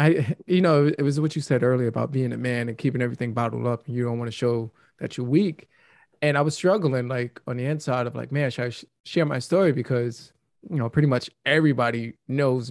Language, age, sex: English, 20-39, male